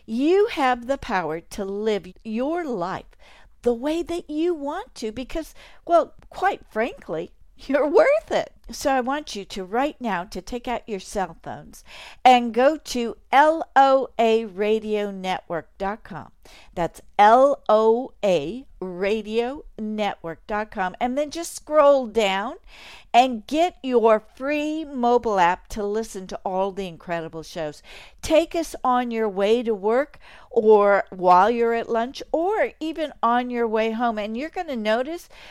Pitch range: 195-265 Hz